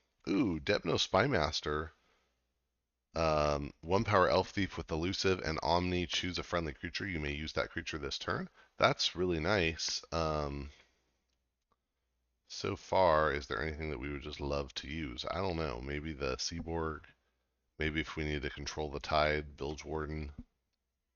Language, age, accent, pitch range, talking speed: English, 30-49, American, 70-80 Hz, 155 wpm